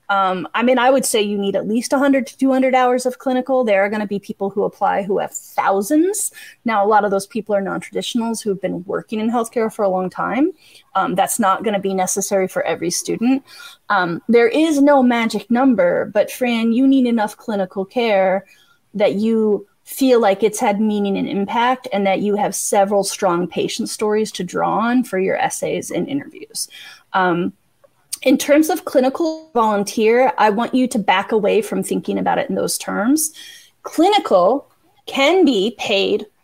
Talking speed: 190 wpm